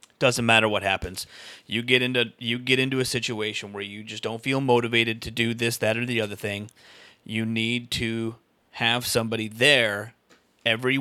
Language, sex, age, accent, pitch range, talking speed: English, male, 30-49, American, 110-130 Hz, 180 wpm